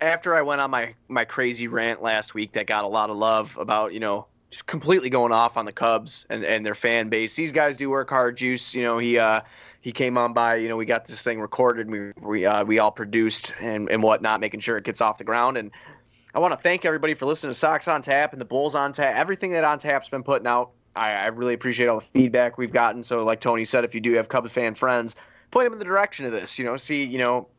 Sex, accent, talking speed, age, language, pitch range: male, American, 275 wpm, 20-39, English, 115-140 Hz